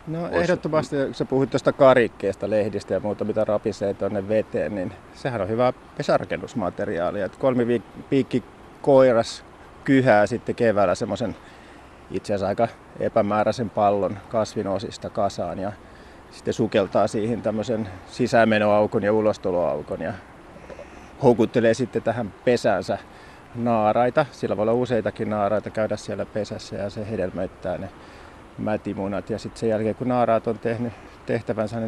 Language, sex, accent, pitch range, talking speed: Finnish, male, native, 105-120 Hz, 120 wpm